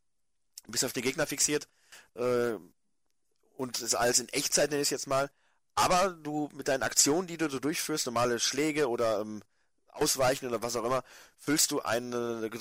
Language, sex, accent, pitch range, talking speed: German, male, German, 115-140 Hz, 185 wpm